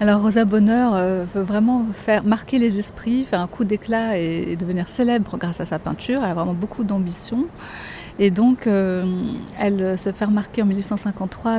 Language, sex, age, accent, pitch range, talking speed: French, female, 30-49, French, 185-215 Hz, 170 wpm